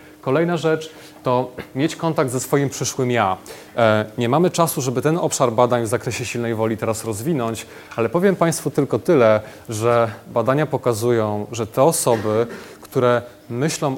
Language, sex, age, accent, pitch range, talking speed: Polish, male, 30-49, native, 115-145 Hz, 150 wpm